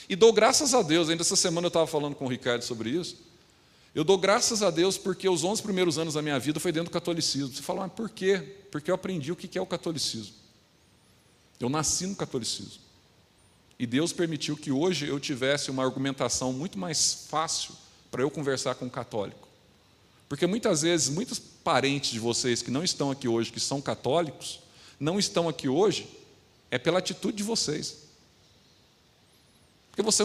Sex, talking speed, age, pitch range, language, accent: male, 185 wpm, 40-59, 140-200 Hz, Portuguese, Brazilian